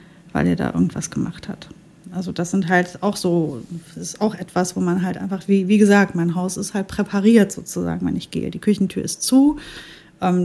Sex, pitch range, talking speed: female, 180-210 Hz, 205 wpm